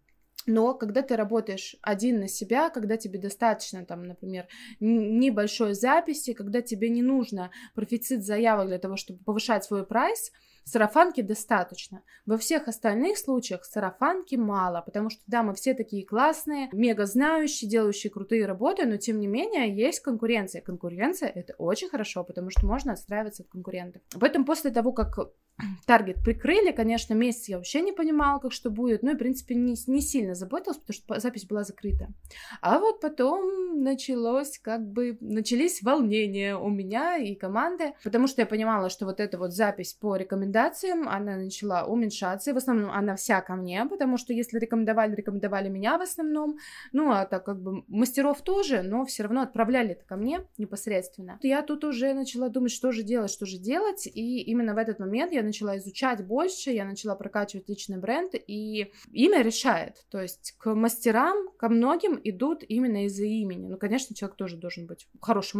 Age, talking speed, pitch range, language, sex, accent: 20-39, 175 wpm, 200-260 Hz, Russian, female, native